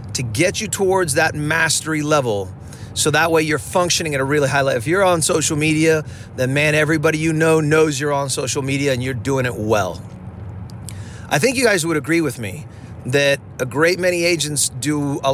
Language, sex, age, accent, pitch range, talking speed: English, male, 30-49, American, 130-170 Hz, 205 wpm